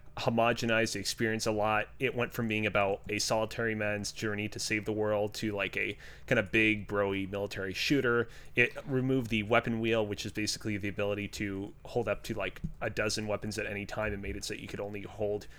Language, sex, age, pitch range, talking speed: English, male, 30-49, 105-120 Hz, 215 wpm